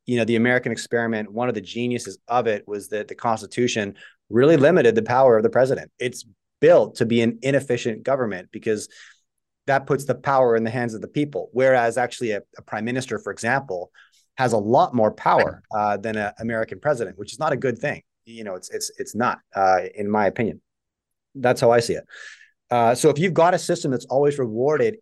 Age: 30-49